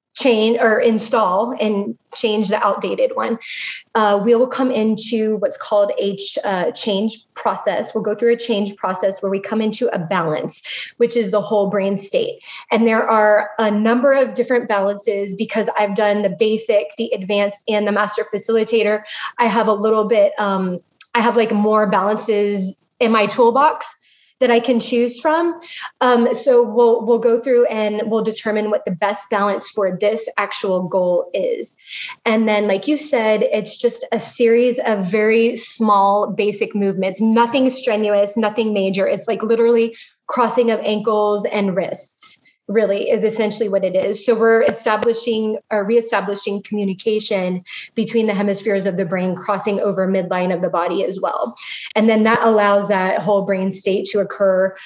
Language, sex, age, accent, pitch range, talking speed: English, female, 20-39, American, 200-230 Hz, 170 wpm